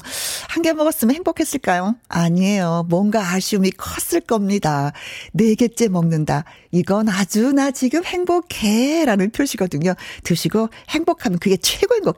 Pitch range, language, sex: 190-295 Hz, Korean, female